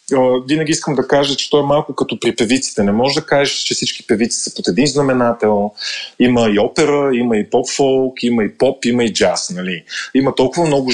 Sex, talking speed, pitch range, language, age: male, 210 wpm, 115-150 Hz, Bulgarian, 30-49